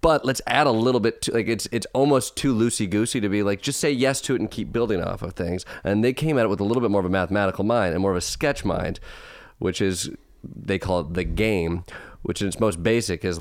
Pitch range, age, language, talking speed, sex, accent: 90-115 Hz, 30-49, English, 275 wpm, male, American